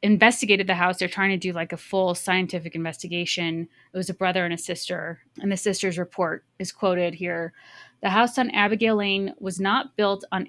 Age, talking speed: 20-39, 200 wpm